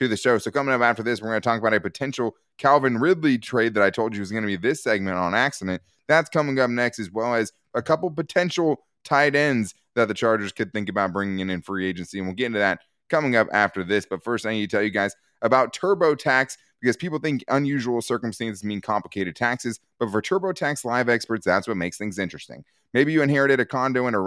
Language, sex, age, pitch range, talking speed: English, male, 20-39, 100-140 Hz, 235 wpm